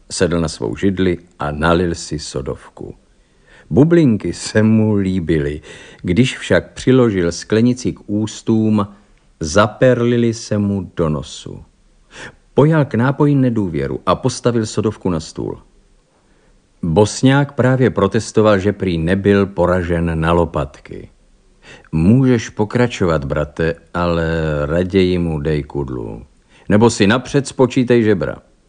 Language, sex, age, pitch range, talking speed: Czech, male, 50-69, 85-115 Hz, 115 wpm